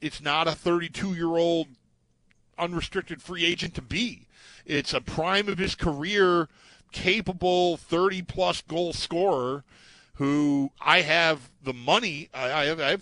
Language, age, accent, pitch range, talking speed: English, 40-59, American, 135-190 Hz, 150 wpm